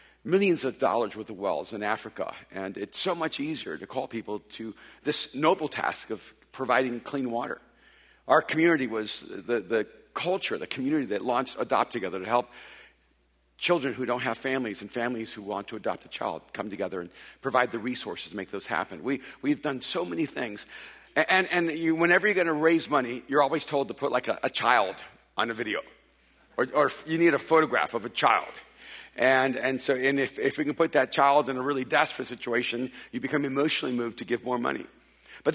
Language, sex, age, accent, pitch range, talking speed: English, male, 50-69, American, 120-155 Hz, 210 wpm